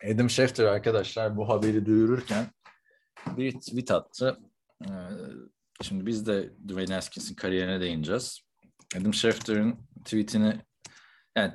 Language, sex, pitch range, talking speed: Turkish, male, 105-135 Hz, 105 wpm